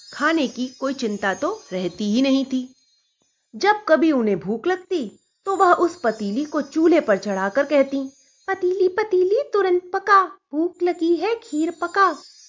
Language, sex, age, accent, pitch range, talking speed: Hindi, female, 30-49, native, 215-335 Hz, 155 wpm